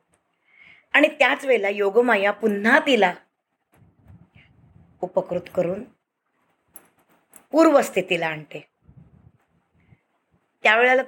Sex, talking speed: female, 65 wpm